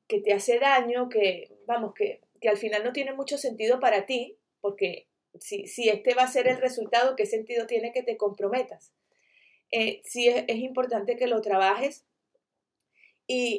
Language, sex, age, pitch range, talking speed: Spanish, female, 30-49, 210-290 Hz, 175 wpm